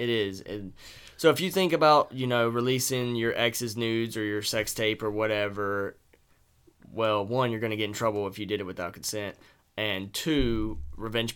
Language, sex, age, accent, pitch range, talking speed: English, male, 20-39, American, 100-125 Hz, 195 wpm